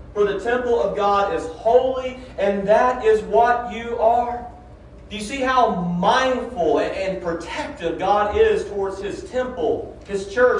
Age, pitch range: 40-59, 155-225 Hz